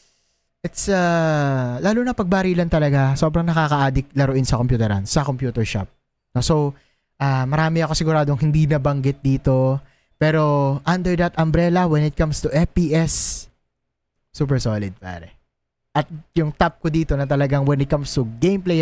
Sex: male